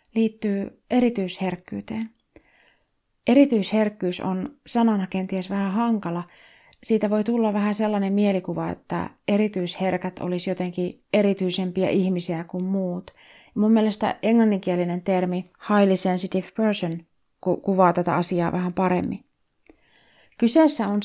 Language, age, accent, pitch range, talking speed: Finnish, 30-49, native, 180-215 Hz, 105 wpm